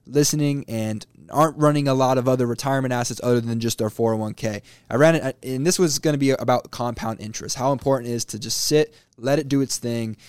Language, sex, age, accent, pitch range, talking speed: English, male, 20-39, American, 115-145 Hz, 225 wpm